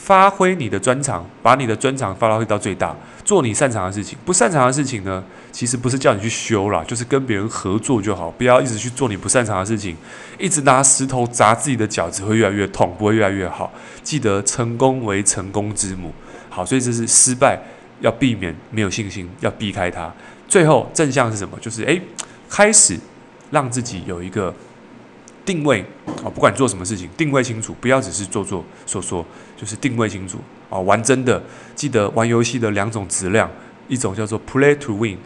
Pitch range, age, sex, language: 100-130 Hz, 20-39, male, Chinese